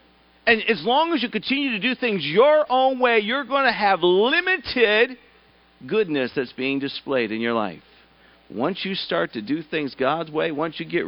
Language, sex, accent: English, male, American